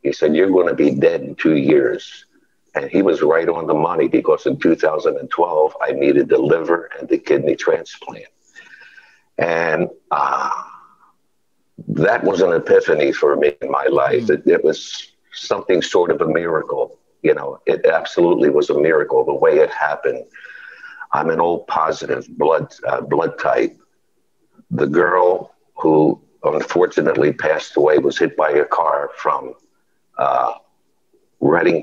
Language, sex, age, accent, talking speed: English, male, 60-79, American, 150 wpm